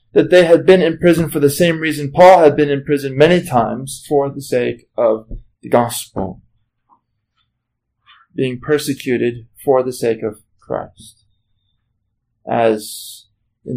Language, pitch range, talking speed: English, 115-140 Hz, 140 wpm